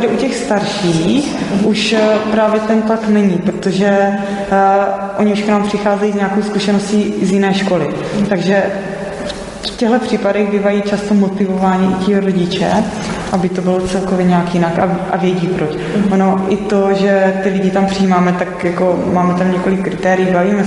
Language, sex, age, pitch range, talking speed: Czech, female, 20-39, 185-210 Hz, 155 wpm